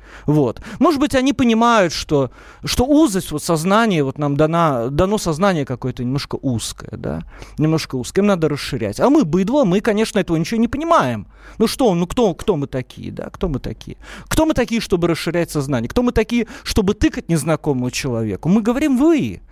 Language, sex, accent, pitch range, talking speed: Russian, male, native, 140-225 Hz, 185 wpm